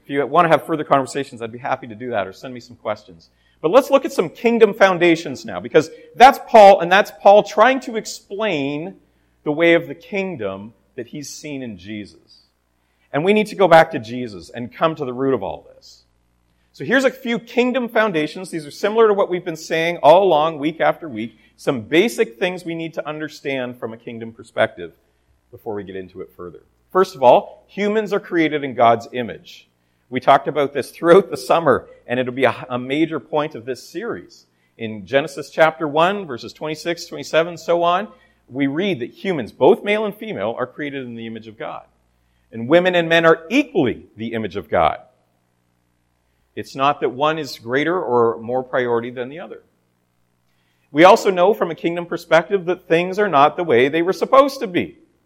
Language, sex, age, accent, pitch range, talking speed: English, male, 40-59, American, 115-185 Hz, 205 wpm